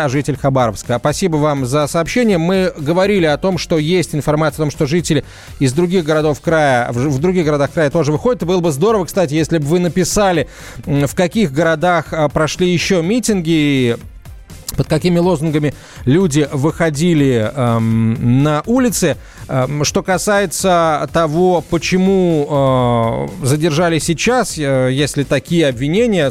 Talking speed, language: 140 wpm, Russian